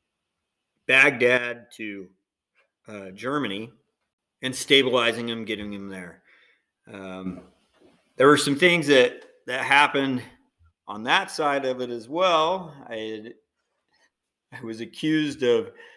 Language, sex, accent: English, male, American